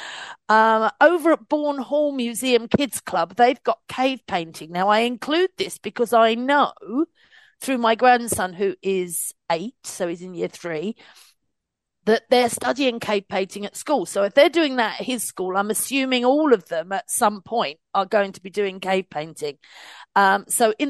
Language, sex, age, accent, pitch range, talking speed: English, female, 40-59, British, 190-250 Hz, 180 wpm